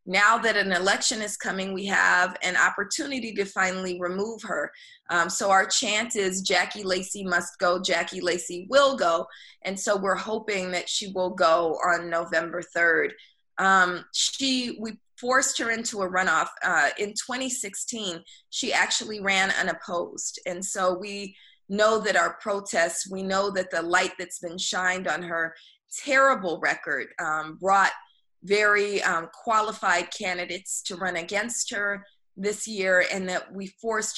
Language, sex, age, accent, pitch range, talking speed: English, female, 20-39, American, 175-210 Hz, 155 wpm